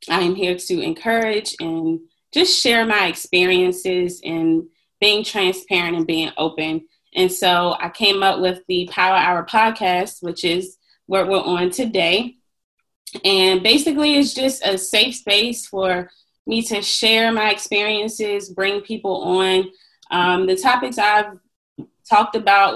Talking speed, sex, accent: 140 wpm, female, American